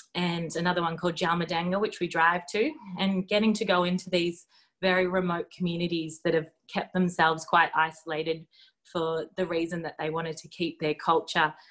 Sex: female